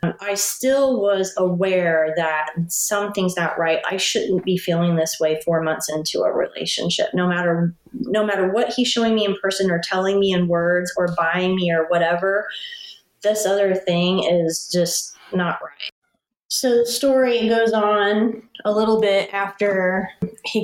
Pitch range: 175-205 Hz